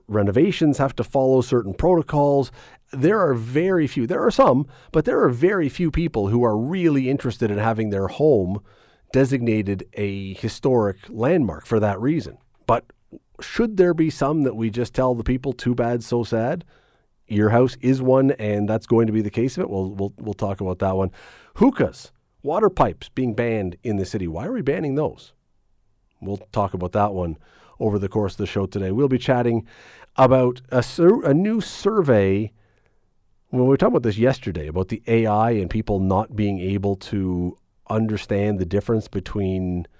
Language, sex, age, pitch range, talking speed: English, male, 40-59, 100-135 Hz, 185 wpm